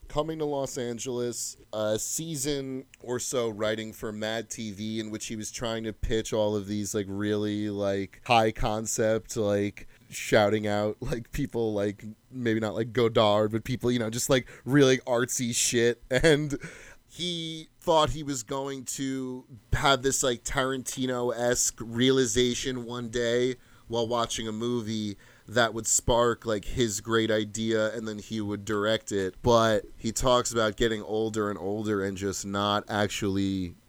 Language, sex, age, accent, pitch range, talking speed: English, male, 30-49, American, 105-125 Hz, 160 wpm